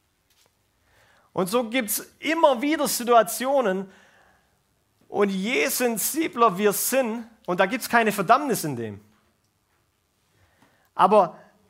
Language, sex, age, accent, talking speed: German, male, 40-59, German, 110 wpm